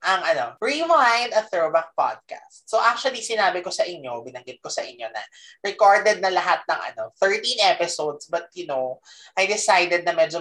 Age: 20-39